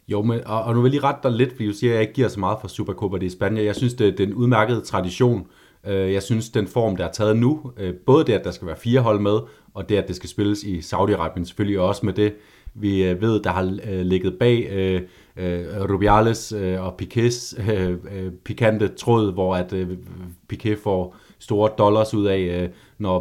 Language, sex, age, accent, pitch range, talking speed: Danish, male, 30-49, native, 95-115 Hz, 205 wpm